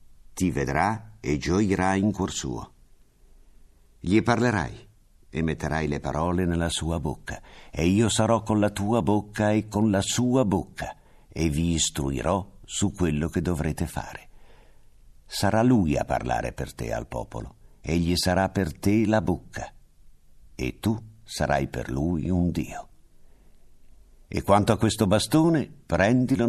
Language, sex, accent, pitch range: Italian, male, native, 75-100 Hz